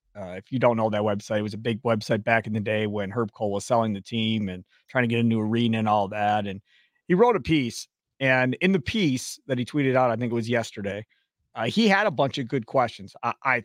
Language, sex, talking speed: English, male, 270 wpm